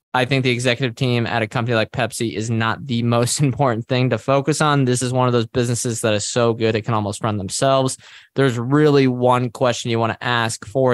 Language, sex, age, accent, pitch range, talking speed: English, male, 20-39, American, 110-135 Hz, 235 wpm